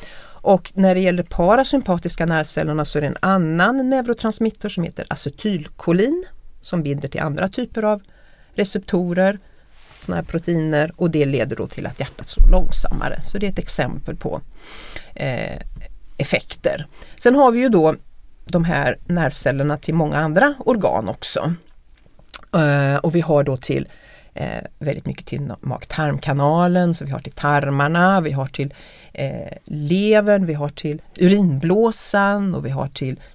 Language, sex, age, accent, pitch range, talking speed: Swedish, female, 40-59, native, 150-200 Hz, 150 wpm